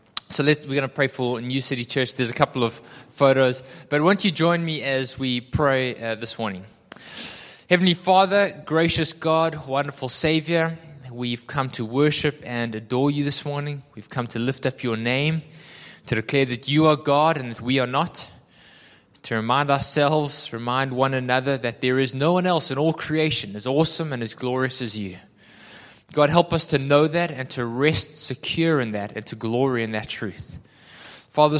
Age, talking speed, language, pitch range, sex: 20-39, 190 wpm, English, 120-150 Hz, male